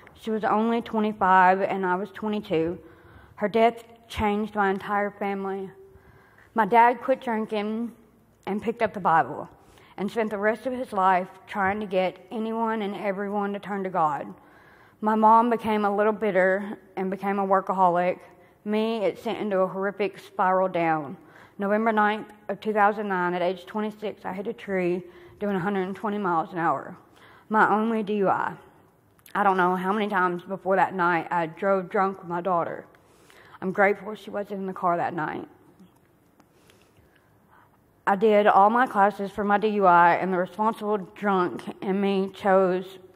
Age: 30-49